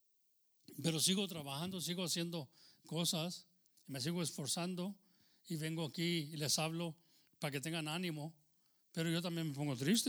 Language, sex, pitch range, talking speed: English, male, 155-210 Hz, 150 wpm